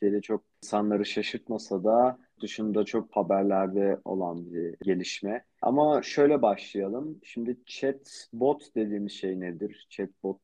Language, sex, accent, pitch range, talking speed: Turkish, male, native, 100-125 Hz, 125 wpm